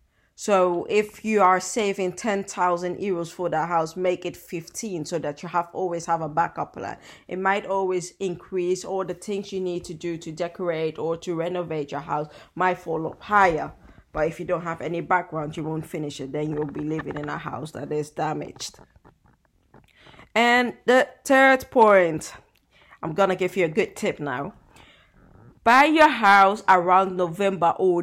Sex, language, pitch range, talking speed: female, English, 165-205 Hz, 180 wpm